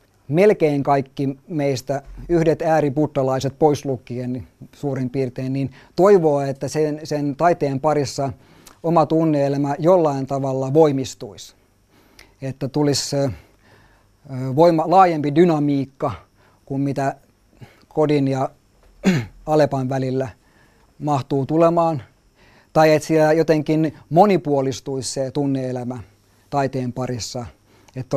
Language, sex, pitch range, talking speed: Finnish, male, 130-155 Hz, 95 wpm